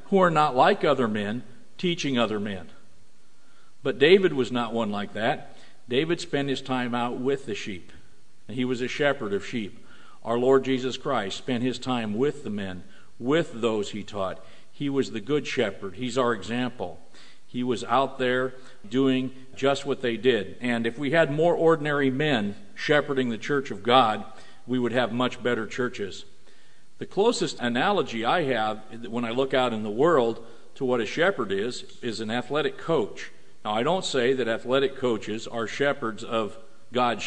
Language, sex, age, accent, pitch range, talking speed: English, male, 50-69, American, 115-140 Hz, 180 wpm